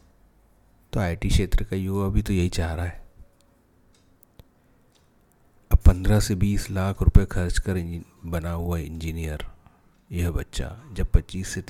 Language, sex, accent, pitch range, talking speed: Hindi, male, native, 80-100 Hz, 145 wpm